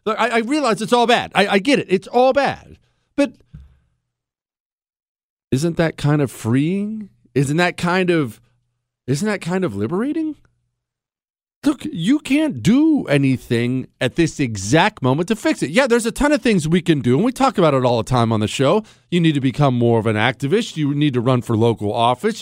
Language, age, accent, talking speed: English, 40-59, American, 205 wpm